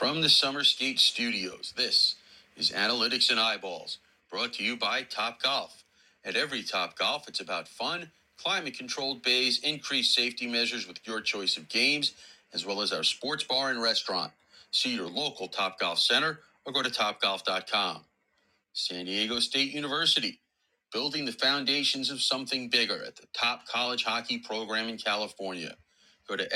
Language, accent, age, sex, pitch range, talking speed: English, American, 40-59, male, 110-155 Hz, 165 wpm